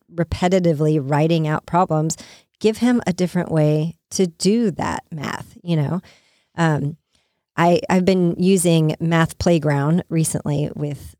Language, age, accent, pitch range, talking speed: English, 40-59, American, 155-180 Hz, 130 wpm